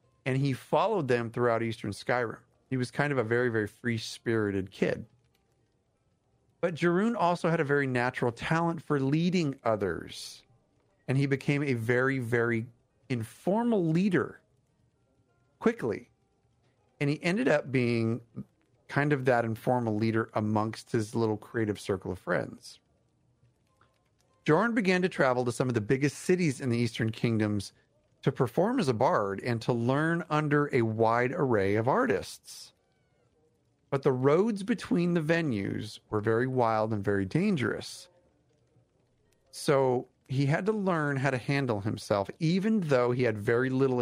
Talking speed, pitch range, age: 145 wpm, 115-145 Hz, 40-59